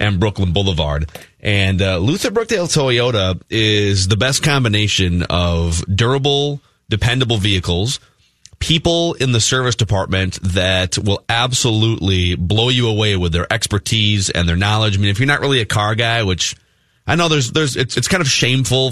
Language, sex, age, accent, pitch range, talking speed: English, male, 30-49, American, 95-130 Hz, 165 wpm